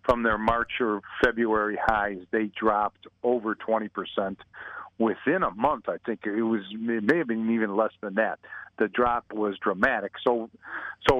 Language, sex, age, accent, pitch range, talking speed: English, male, 50-69, American, 110-140 Hz, 150 wpm